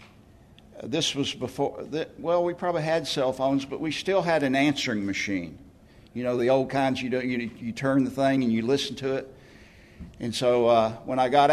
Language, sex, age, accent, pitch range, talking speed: English, male, 60-79, American, 100-140 Hz, 205 wpm